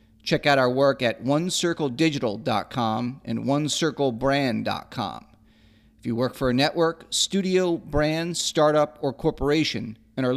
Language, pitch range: English, 115-155 Hz